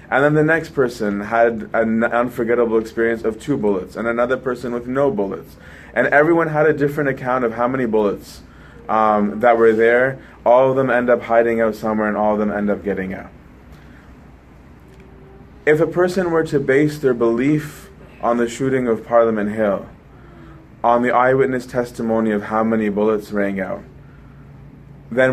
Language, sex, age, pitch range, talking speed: English, male, 20-39, 105-130 Hz, 175 wpm